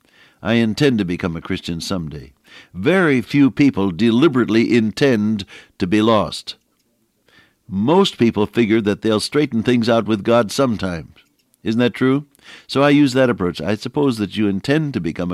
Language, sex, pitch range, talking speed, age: English, male, 100-130 Hz, 160 wpm, 60-79